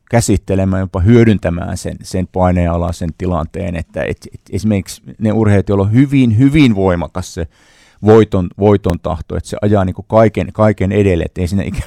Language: Finnish